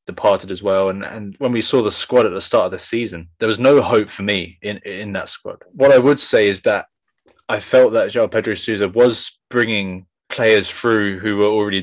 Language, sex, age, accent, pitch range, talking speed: English, male, 20-39, British, 95-110 Hz, 230 wpm